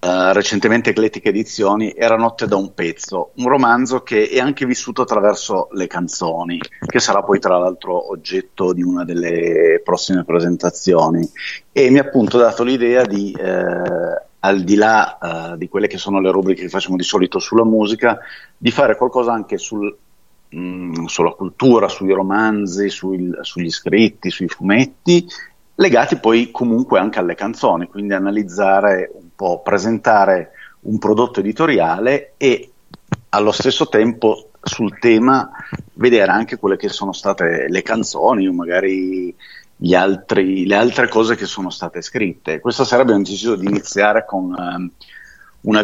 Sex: male